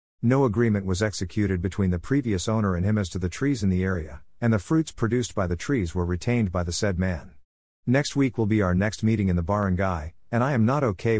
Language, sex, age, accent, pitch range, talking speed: English, male, 50-69, American, 90-115 Hz, 240 wpm